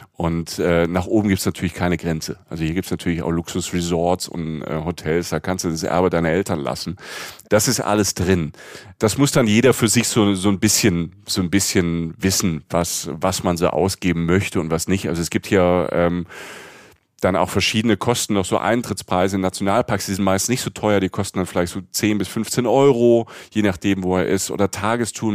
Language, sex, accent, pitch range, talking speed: German, male, German, 90-110 Hz, 215 wpm